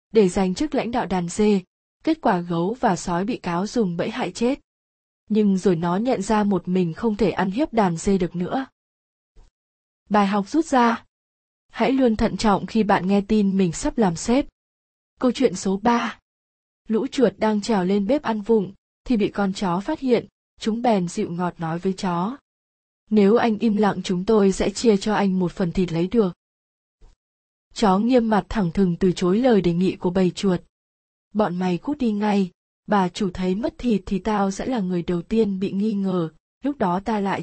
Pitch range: 185-230 Hz